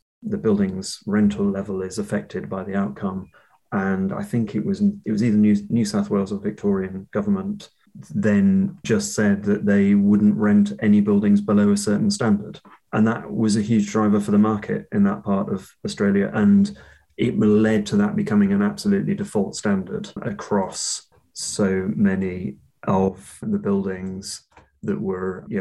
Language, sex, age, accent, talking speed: English, male, 30-49, British, 165 wpm